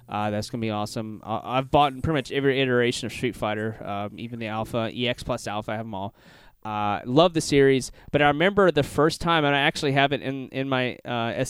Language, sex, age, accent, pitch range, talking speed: English, male, 20-39, American, 110-135 Hz, 240 wpm